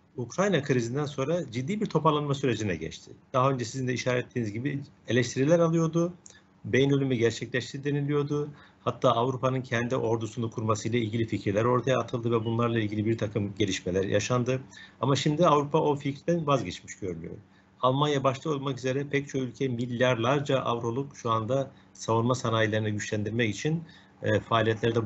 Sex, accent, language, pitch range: male, native, Turkish, 105-140 Hz